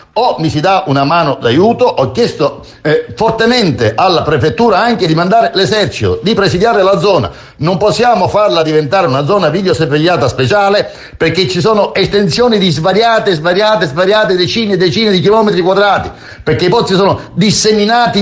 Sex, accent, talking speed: male, native, 160 wpm